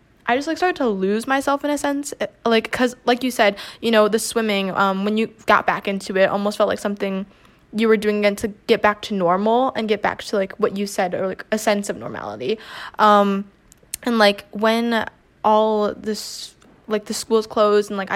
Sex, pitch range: female, 205-250 Hz